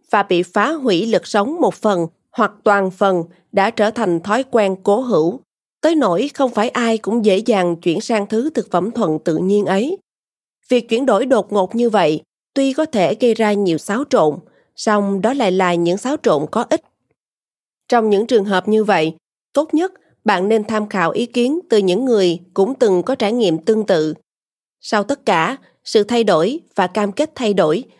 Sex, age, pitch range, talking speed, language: female, 20-39, 185-240 Hz, 200 wpm, Vietnamese